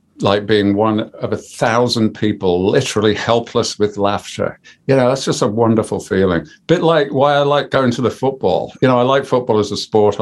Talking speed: 205 wpm